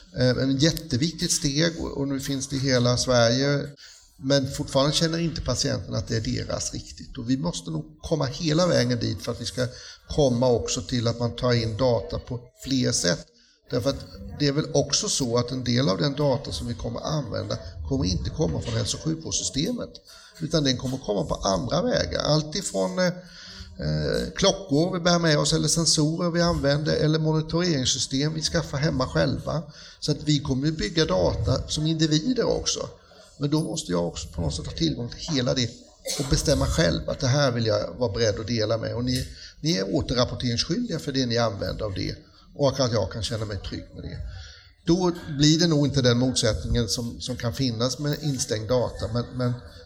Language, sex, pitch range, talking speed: Swedish, male, 120-155 Hz, 195 wpm